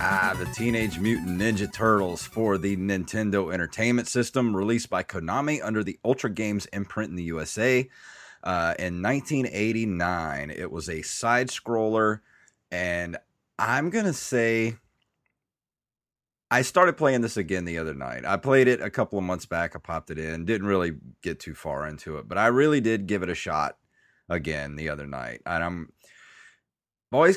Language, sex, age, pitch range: English, male, 30-49, 90-125 Hz